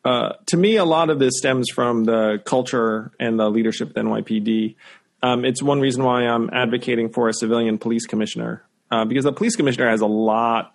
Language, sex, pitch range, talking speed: English, male, 110-125 Hz, 205 wpm